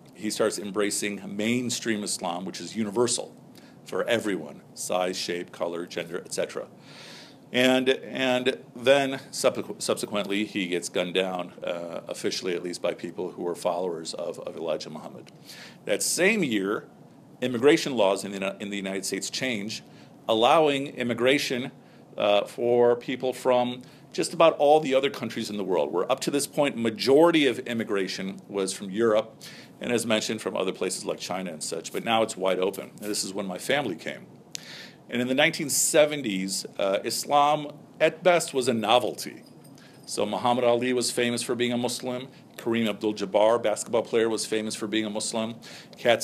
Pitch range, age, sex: 105-130 Hz, 50-69, male